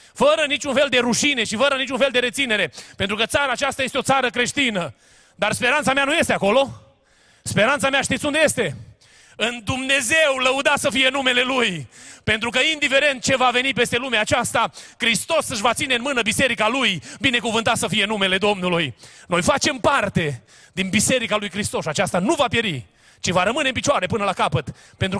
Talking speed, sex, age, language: 190 wpm, male, 30-49, Romanian